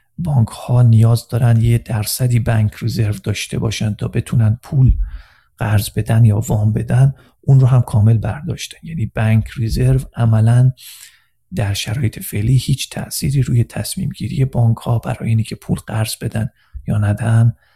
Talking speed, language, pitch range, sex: 150 wpm, Persian, 110-130 Hz, male